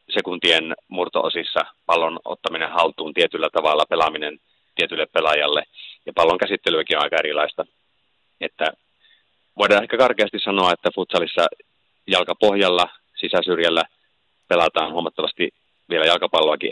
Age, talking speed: 30-49, 105 wpm